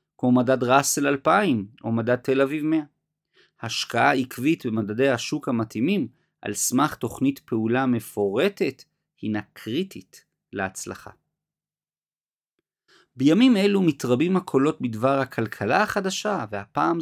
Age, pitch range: 40-59, 120-155 Hz